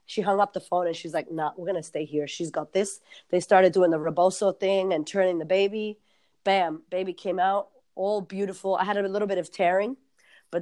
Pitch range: 170-200 Hz